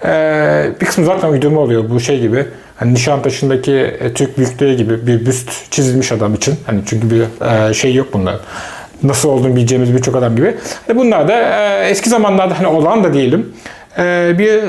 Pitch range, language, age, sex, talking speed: 130-175 Hz, Turkish, 40-59, male, 185 wpm